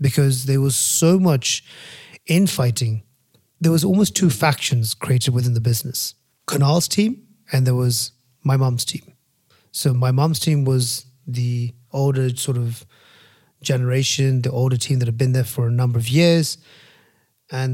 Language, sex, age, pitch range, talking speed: English, male, 30-49, 125-145 Hz, 155 wpm